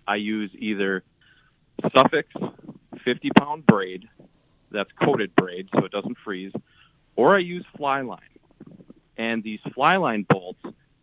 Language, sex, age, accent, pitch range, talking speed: English, male, 30-49, American, 105-140 Hz, 130 wpm